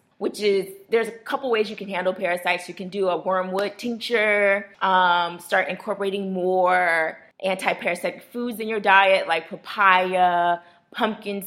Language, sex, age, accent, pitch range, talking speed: English, female, 20-39, American, 180-225 Hz, 145 wpm